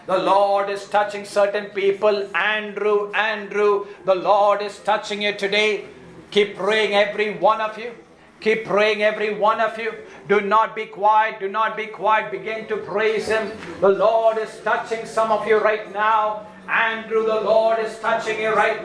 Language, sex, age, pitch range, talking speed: English, male, 50-69, 210-230 Hz, 170 wpm